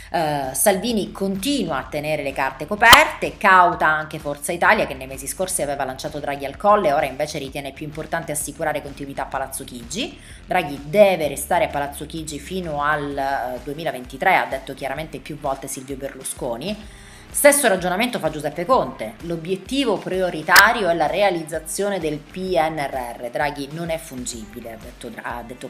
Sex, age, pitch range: female, 20-39, 135-180 Hz